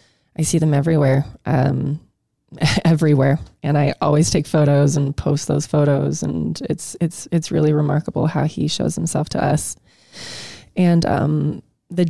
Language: English